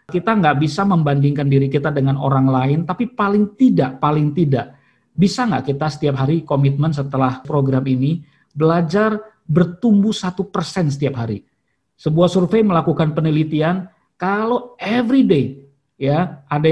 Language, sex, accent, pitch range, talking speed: Indonesian, male, native, 140-190 Hz, 135 wpm